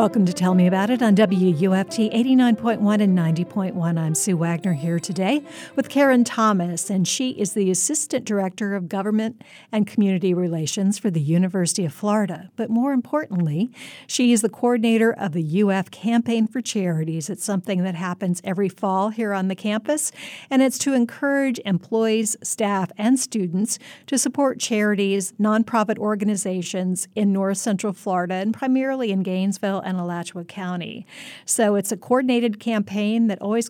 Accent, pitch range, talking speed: American, 190-230 Hz, 160 wpm